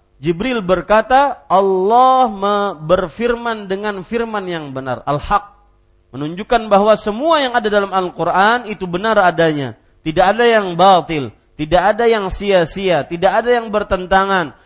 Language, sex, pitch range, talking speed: Malay, male, 150-225 Hz, 125 wpm